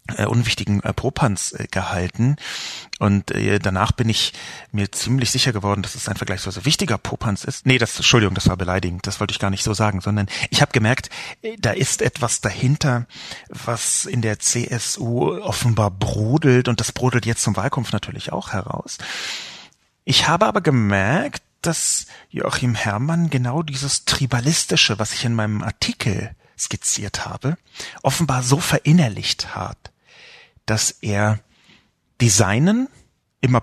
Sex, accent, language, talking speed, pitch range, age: male, German, German, 150 wpm, 100-130 Hz, 40-59